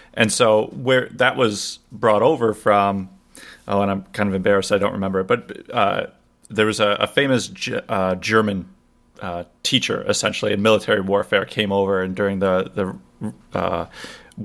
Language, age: English, 30-49